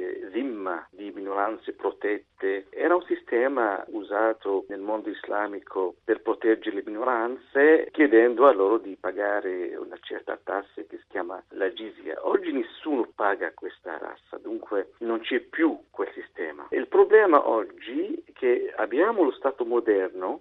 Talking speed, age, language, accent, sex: 140 wpm, 50-69, Italian, native, male